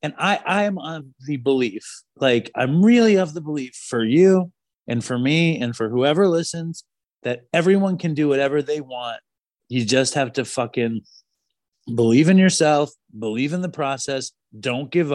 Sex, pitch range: male, 125-165 Hz